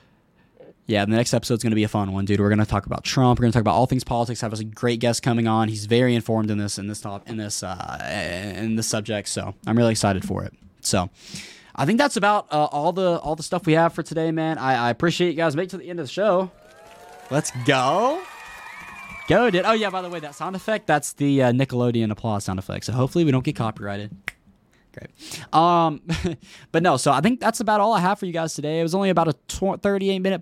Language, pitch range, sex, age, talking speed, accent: English, 110-170 Hz, male, 10-29, 245 wpm, American